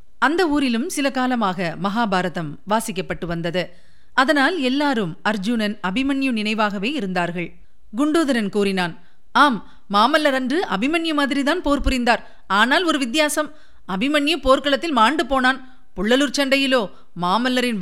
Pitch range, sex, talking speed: 210-290 Hz, female, 110 wpm